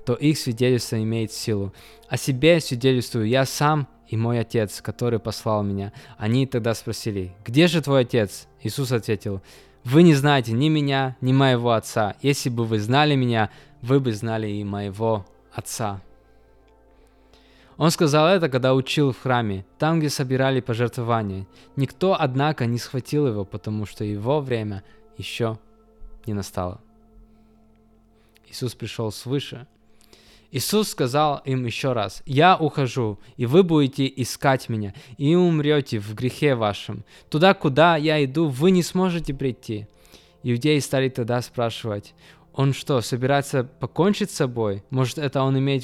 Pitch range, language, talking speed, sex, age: 110-145 Hz, Russian, 145 wpm, male, 20-39